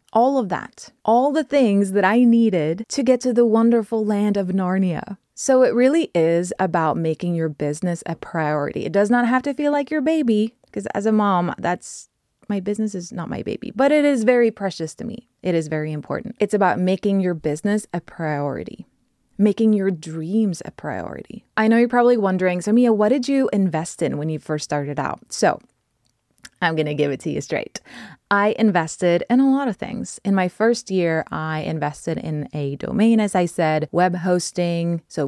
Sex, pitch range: female, 165-230 Hz